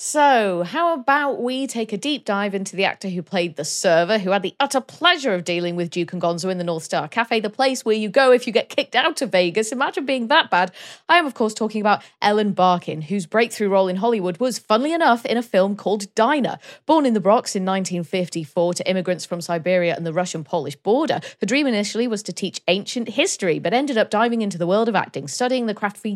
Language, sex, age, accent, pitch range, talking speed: English, female, 30-49, British, 190-270 Hz, 235 wpm